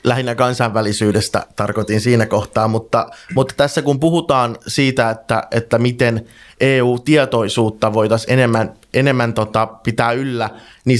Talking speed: 120 wpm